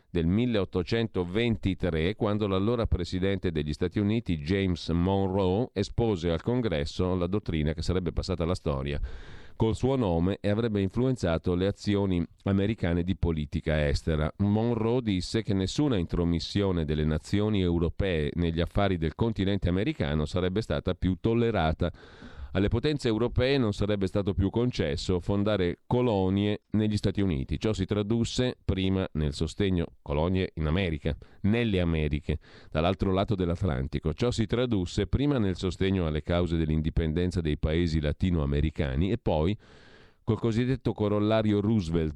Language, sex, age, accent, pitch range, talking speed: Italian, male, 40-59, native, 80-105 Hz, 135 wpm